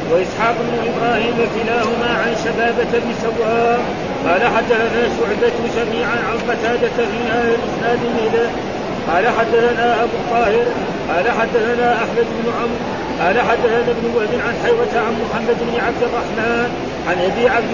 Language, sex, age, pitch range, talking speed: Arabic, male, 40-59, 230-240 Hz, 140 wpm